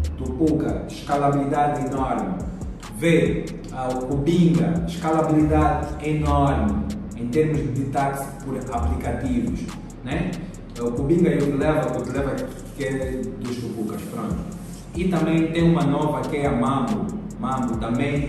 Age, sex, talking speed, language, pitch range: 30-49, male, 125 wpm, Portuguese, 125-150 Hz